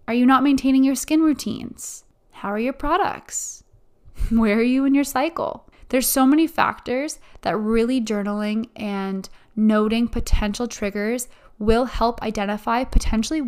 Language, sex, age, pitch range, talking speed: English, female, 20-39, 210-245 Hz, 145 wpm